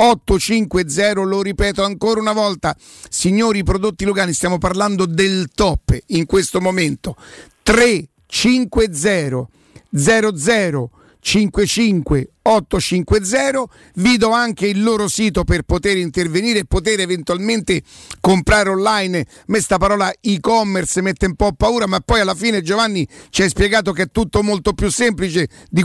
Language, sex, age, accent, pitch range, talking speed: Italian, male, 50-69, native, 180-215 Hz, 130 wpm